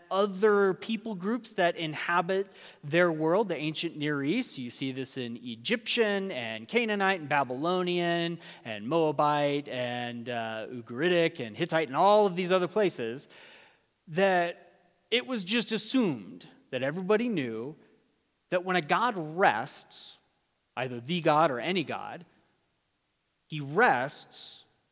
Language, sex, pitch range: English, male, 140-200 Hz